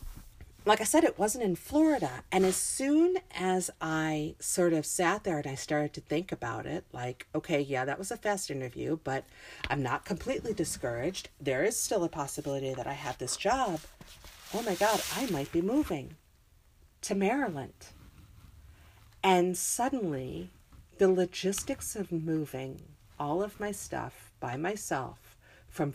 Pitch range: 135-200 Hz